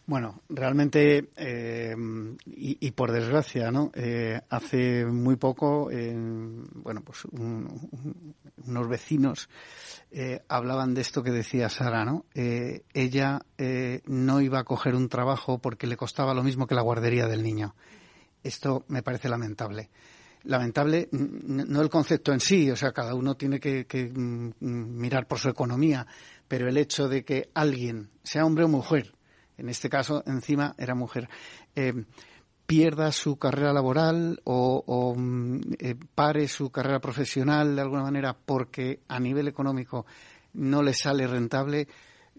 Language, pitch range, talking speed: Spanish, 120-145 Hz, 150 wpm